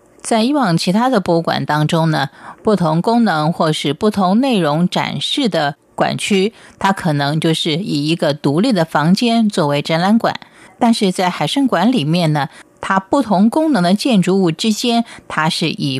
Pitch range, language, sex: 155-215 Hz, Chinese, female